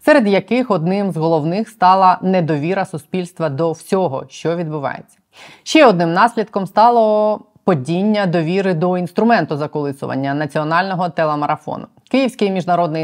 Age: 20-39